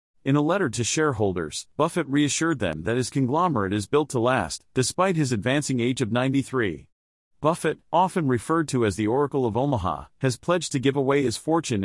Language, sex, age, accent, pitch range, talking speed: English, male, 40-59, American, 115-150 Hz, 185 wpm